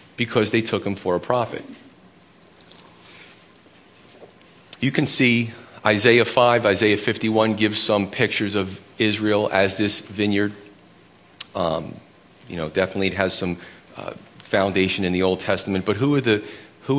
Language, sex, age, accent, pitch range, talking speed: English, male, 40-59, American, 95-110 Hz, 140 wpm